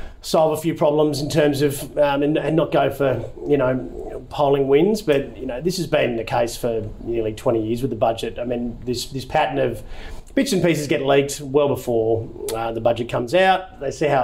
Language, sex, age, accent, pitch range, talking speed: English, male, 30-49, Australian, 110-130 Hz, 225 wpm